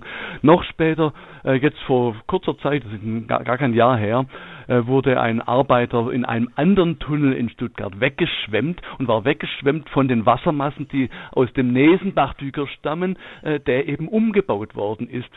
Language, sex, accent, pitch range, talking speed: German, male, German, 115-145 Hz, 150 wpm